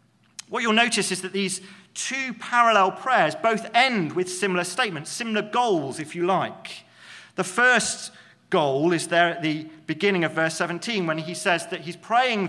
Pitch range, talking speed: 140-200 Hz, 175 wpm